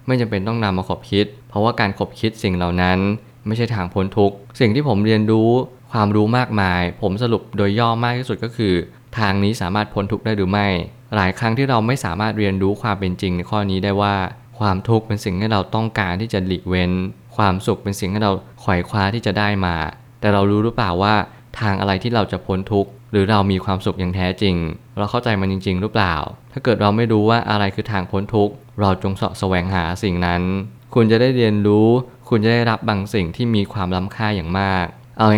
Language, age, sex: Thai, 20-39, male